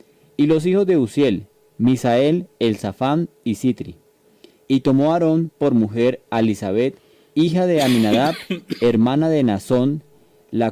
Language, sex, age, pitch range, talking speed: Spanish, male, 30-49, 115-150 Hz, 130 wpm